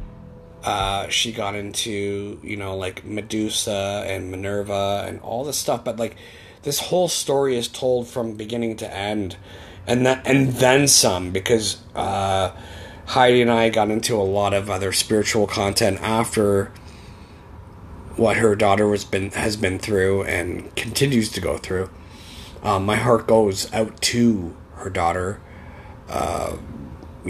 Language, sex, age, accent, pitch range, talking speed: English, male, 30-49, American, 95-115 Hz, 145 wpm